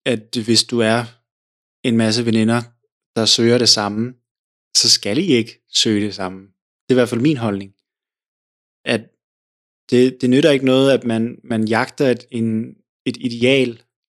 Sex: male